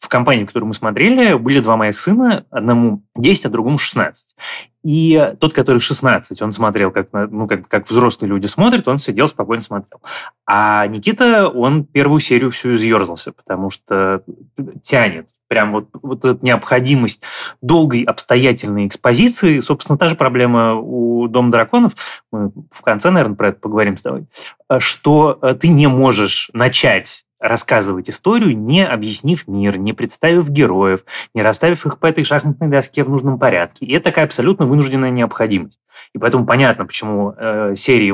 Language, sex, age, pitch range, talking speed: Russian, male, 20-39, 110-145 Hz, 155 wpm